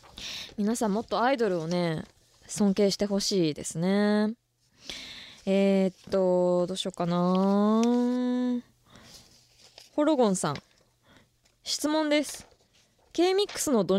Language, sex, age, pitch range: Japanese, female, 20-39, 190-285 Hz